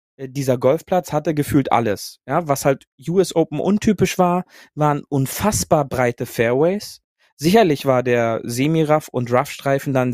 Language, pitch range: German, 125-145 Hz